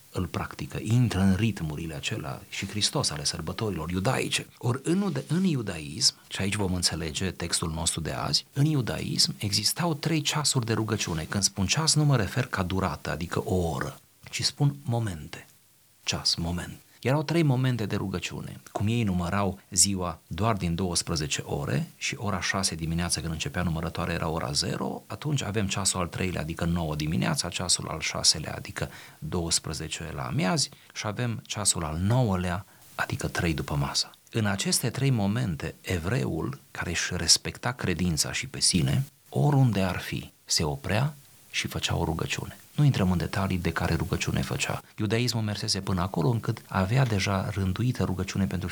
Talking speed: 165 wpm